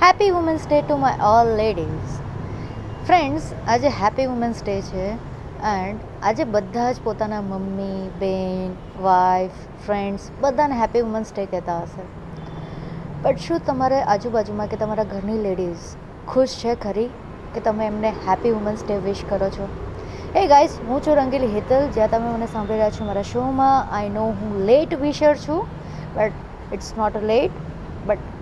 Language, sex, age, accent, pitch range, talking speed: Gujarati, female, 20-39, native, 205-255 Hz, 160 wpm